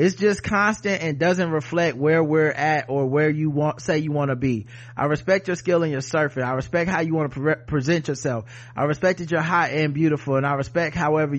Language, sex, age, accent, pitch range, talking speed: English, male, 30-49, American, 125-155 Hz, 230 wpm